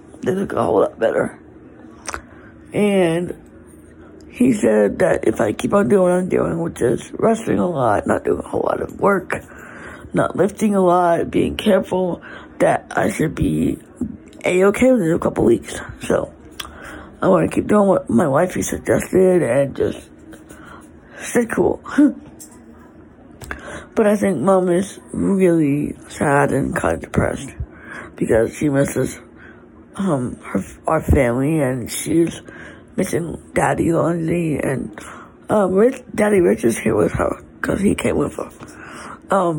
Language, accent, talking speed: English, American, 150 wpm